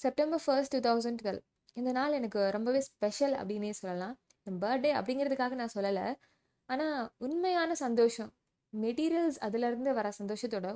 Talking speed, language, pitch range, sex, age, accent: 135 wpm, Tamil, 210-260 Hz, female, 20-39, native